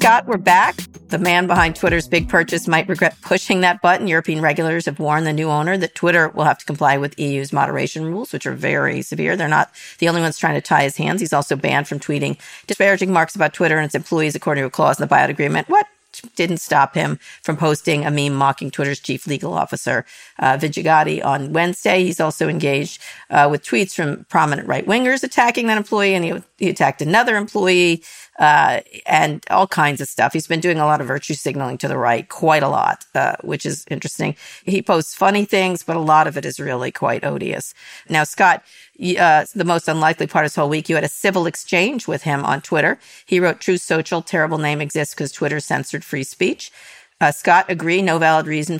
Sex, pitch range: female, 150-180 Hz